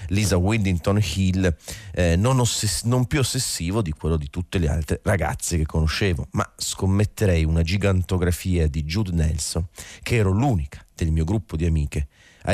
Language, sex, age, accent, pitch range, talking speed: Italian, male, 40-59, native, 80-105 Hz, 165 wpm